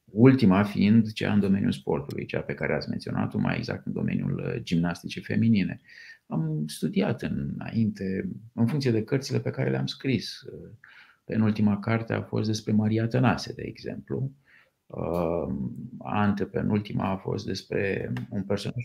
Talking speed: 140 wpm